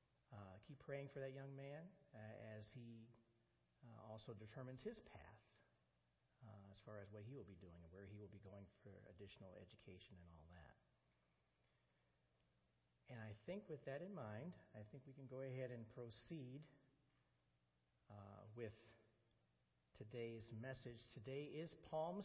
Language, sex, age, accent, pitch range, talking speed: English, male, 50-69, American, 105-130 Hz, 155 wpm